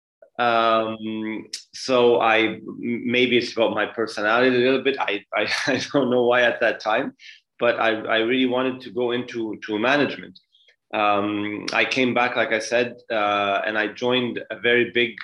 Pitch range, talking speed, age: 110-125 Hz, 175 wpm, 30-49